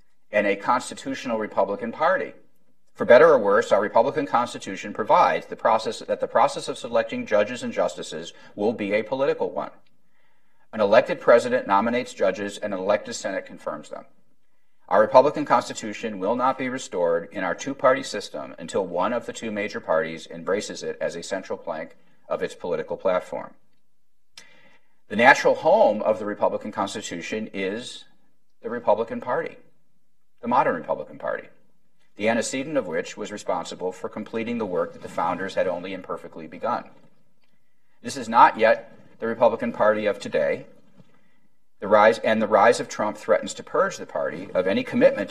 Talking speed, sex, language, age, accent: 160 wpm, male, English, 50-69, American